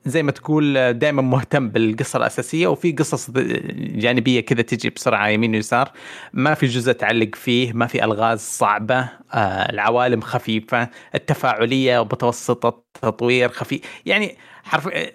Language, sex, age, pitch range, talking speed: Arabic, male, 30-49, 110-135 Hz, 125 wpm